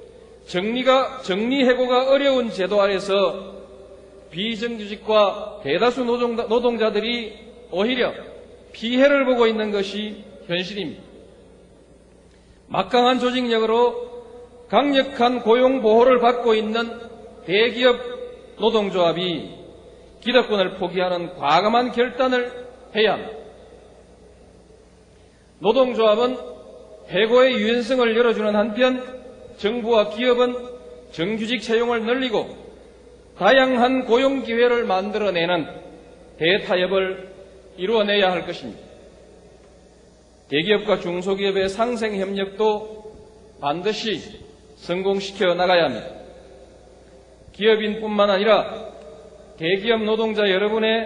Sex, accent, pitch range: male, native, 195-245 Hz